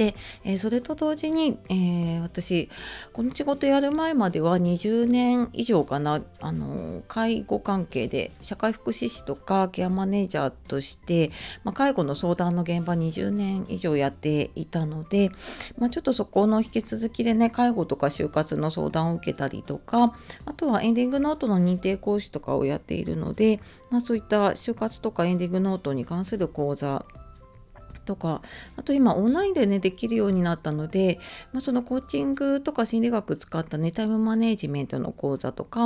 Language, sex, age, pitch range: Japanese, female, 30-49, 150-230 Hz